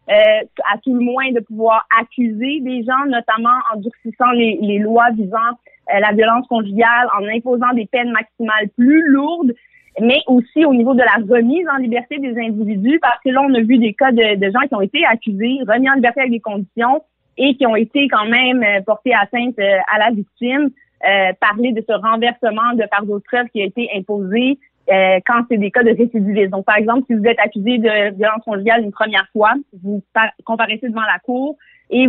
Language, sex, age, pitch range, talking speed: French, female, 30-49, 210-255 Hz, 210 wpm